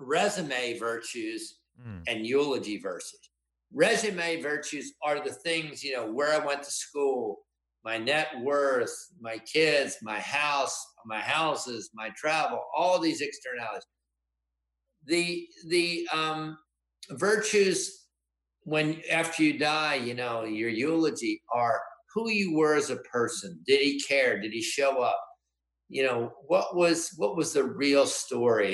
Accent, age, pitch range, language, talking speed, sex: American, 50-69, 125-180 Hz, English, 140 wpm, male